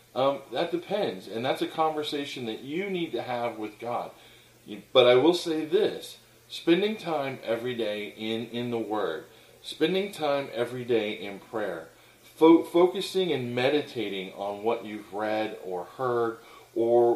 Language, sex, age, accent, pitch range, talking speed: English, male, 40-59, American, 120-180 Hz, 155 wpm